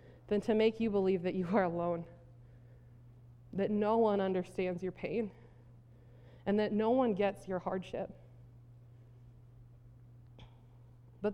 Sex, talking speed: female, 120 wpm